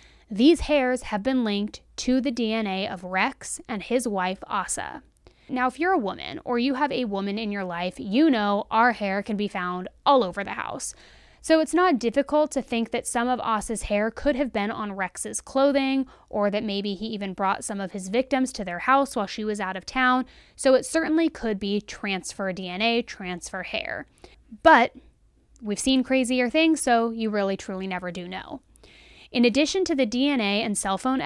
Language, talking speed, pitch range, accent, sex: English, 200 wpm, 200-270 Hz, American, female